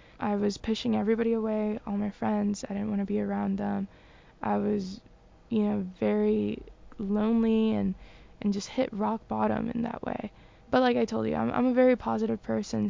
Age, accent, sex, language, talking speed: 10-29, American, female, English, 190 wpm